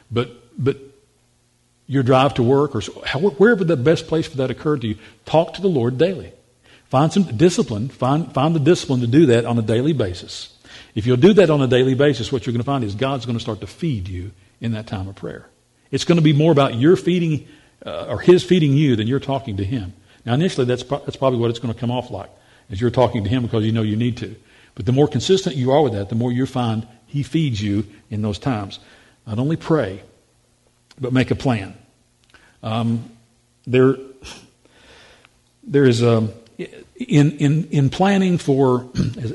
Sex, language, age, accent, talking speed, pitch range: male, English, 50-69, American, 215 wpm, 115-145 Hz